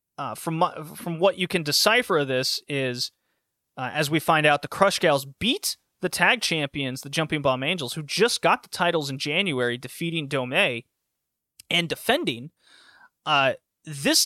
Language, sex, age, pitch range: English, male, 30-49, 140-175 Hz